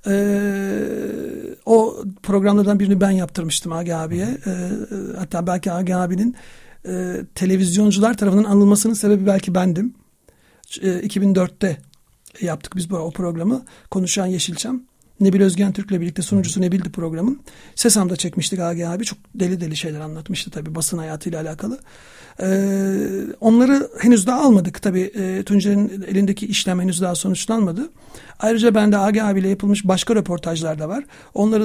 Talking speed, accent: 140 wpm, native